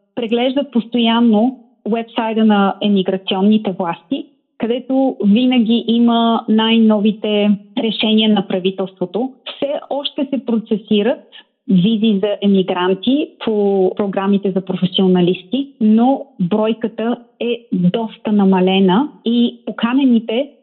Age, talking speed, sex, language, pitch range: 30-49, 90 wpm, female, Bulgarian, 195-230 Hz